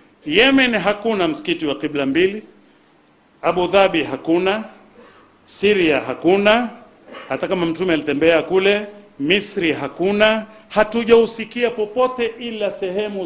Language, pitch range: Swahili, 195-260 Hz